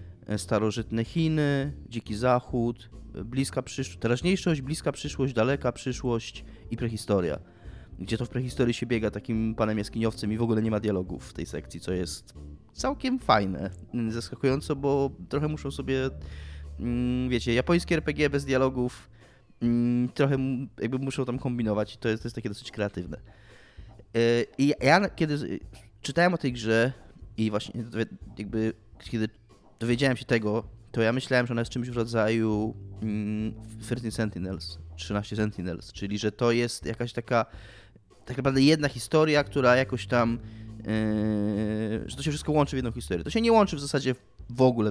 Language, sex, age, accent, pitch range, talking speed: Polish, male, 20-39, native, 105-130 Hz, 155 wpm